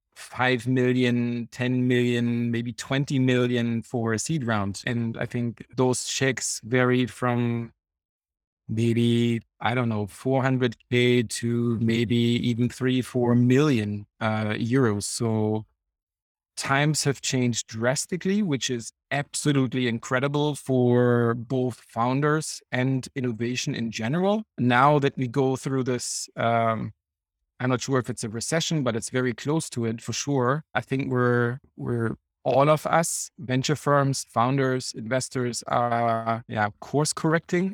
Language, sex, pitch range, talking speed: English, male, 115-135 Hz, 135 wpm